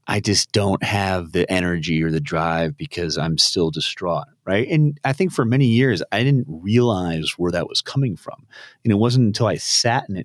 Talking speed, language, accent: 210 wpm, English, American